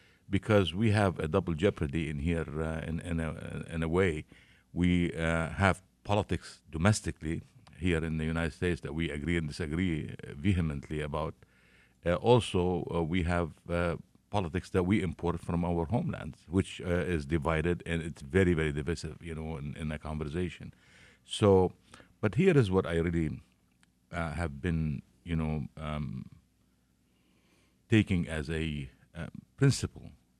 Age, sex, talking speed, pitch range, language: 50-69, male, 155 wpm, 75-90 Hz, English